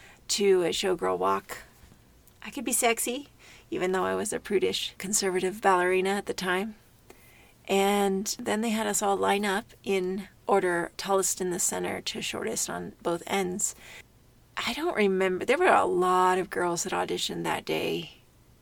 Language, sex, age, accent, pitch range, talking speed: English, female, 30-49, American, 180-225 Hz, 165 wpm